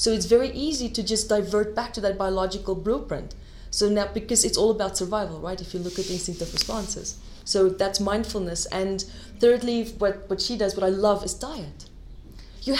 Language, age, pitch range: English, 20-39, 200-245 Hz